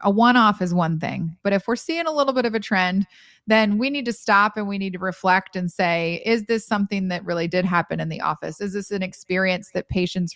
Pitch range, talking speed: 185-225 Hz, 255 wpm